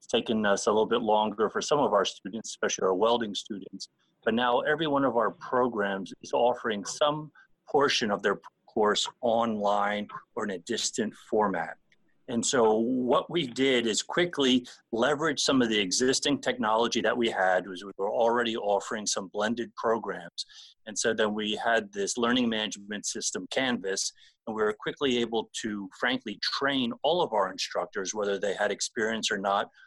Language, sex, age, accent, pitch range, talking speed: English, male, 30-49, American, 105-130 Hz, 175 wpm